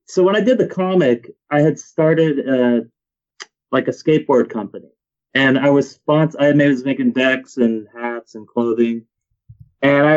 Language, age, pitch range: English, 30-49, 125-175 Hz